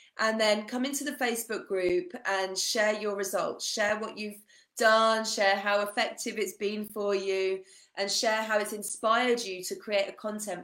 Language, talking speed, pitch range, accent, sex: English, 180 wpm, 205-280 Hz, British, female